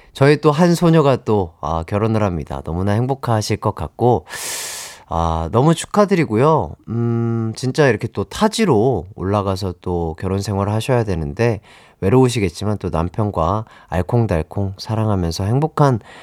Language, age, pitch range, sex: Korean, 30-49, 95-165 Hz, male